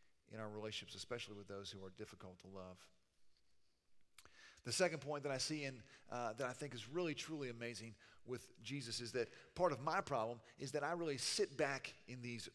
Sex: male